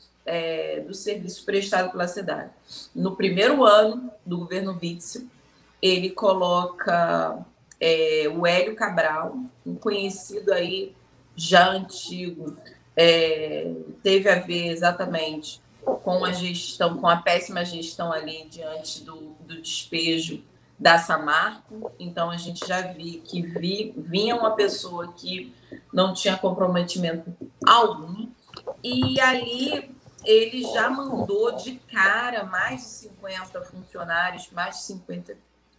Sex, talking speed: female, 120 wpm